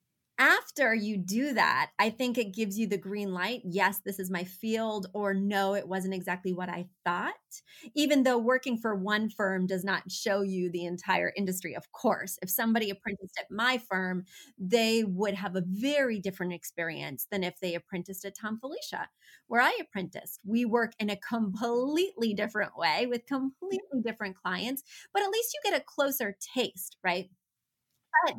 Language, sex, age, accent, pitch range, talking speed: English, female, 30-49, American, 195-260 Hz, 180 wpm